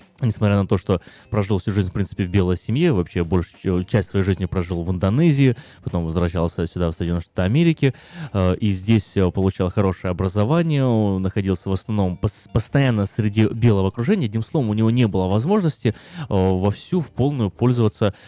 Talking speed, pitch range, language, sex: 165 wpm, 95-120 Hz, Russian, male